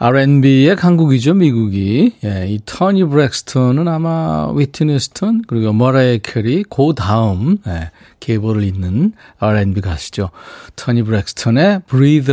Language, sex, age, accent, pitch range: Korean, male, 40-59, native, 115-155 Hz